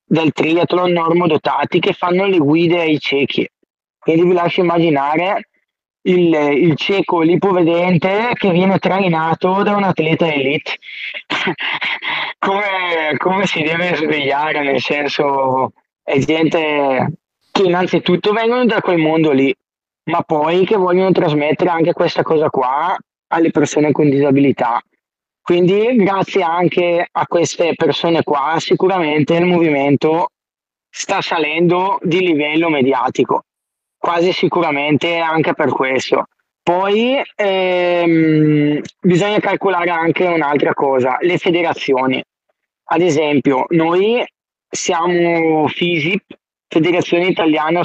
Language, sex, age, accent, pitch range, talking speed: Italian, male, 20-39, native, 150-180 Hz, 110 wpm